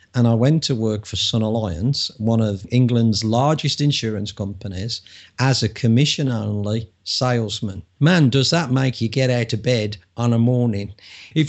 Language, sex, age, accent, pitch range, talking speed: English, male, 50-69, British, 105-130 Hz, 160 wpm